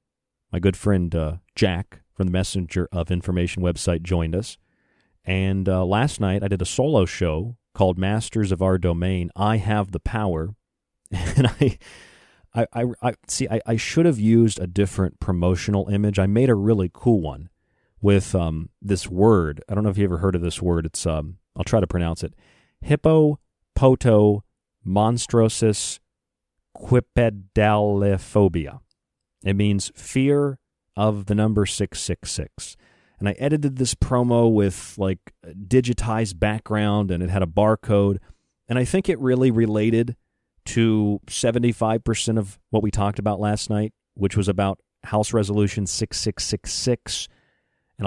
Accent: American